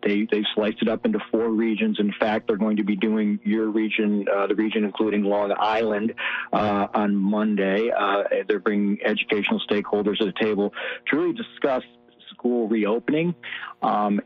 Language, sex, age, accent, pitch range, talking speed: English, male, 50-69, American, 105-120 Hz, 170 wpm